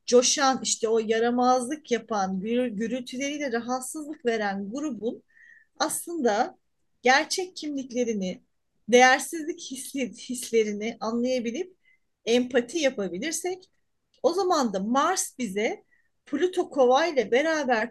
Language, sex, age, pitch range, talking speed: Turkish, female, 40-59, 230-295 Hz, 85 wpm